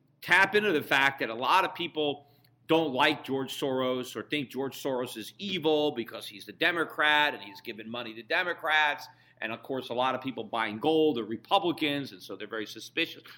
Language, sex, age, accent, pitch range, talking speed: English, male, 40-59, American, 130-175 Hz, 200 wpm